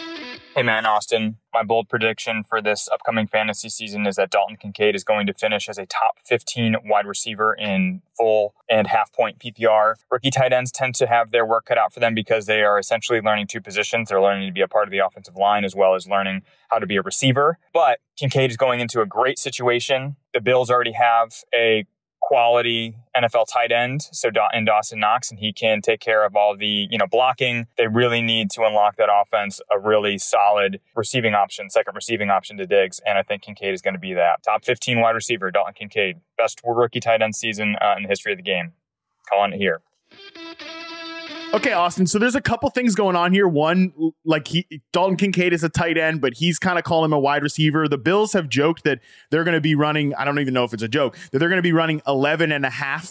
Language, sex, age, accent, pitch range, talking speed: English, male, 20-39, American, 110-160 Hz, 230 wpm